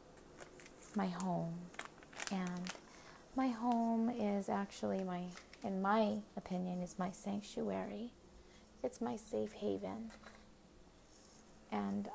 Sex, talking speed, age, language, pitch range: female, 95 wpm, 30-49, English, 175-210 Hz